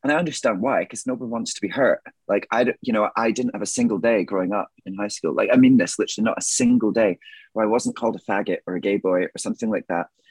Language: English